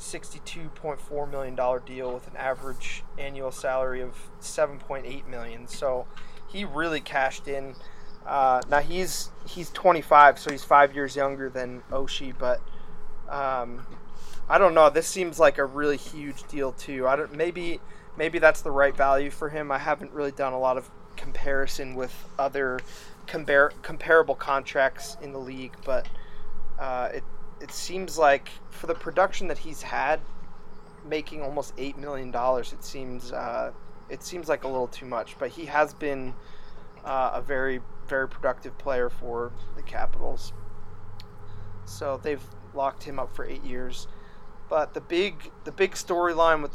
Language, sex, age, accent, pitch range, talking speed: English, male, 20-39, American, 130-150 Hz, 160 wpm